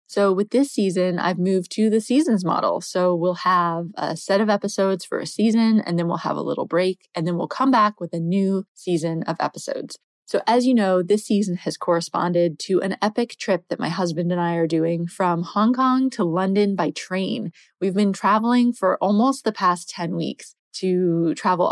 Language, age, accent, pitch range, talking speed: English, 20-39, American, 175-210 Hz, 205 wpm